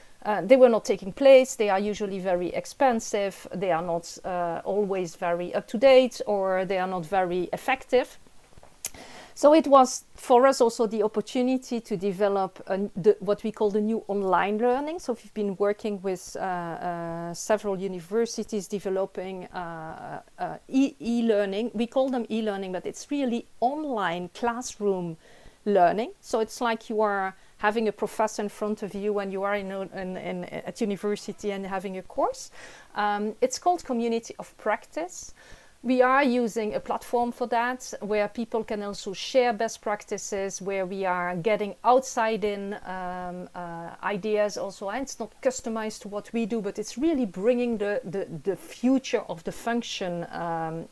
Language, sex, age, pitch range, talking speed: English, female, 40-59, 195-240 Hz, 170 wpm